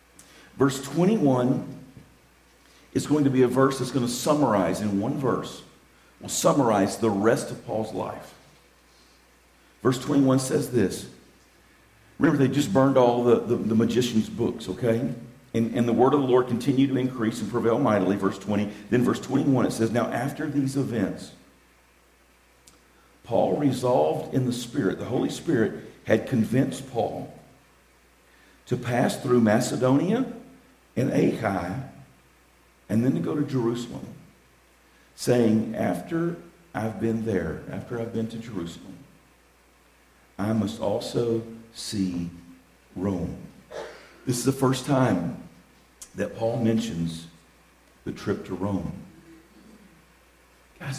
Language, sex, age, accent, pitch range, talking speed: English, male, 50-69, American, 85-130 Hz, 130 wpm